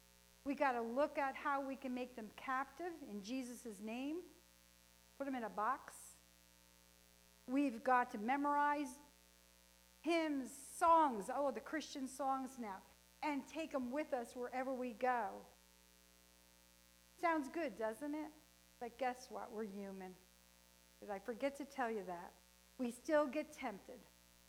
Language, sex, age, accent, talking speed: English, female, 50-69, American, 140 wpm